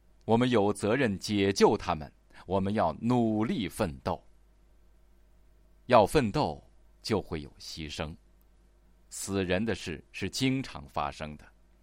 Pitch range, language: 85-110 Hz, Chinese